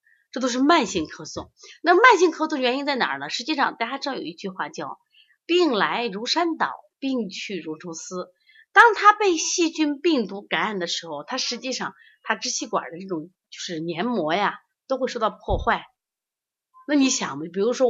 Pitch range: 180-285 Hz